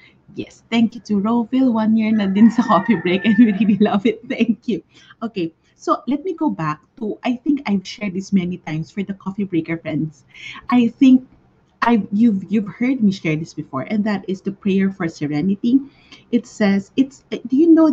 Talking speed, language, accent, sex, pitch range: 205 wpm, English, Filipino, female, 180-235 Hz